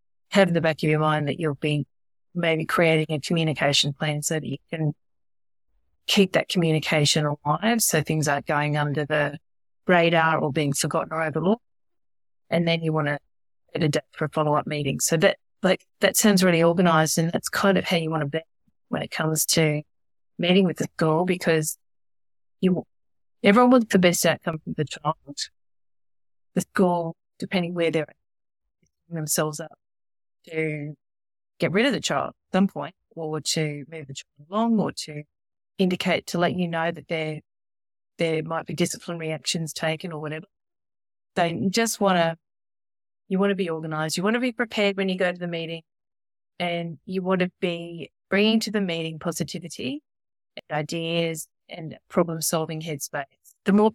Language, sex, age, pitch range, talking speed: English, female, 30-49, 150-180 Hz, 175 wpm